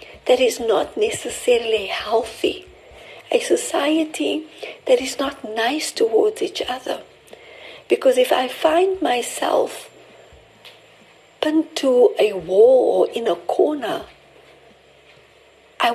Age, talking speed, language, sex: 60-79, 105 wpm, English, female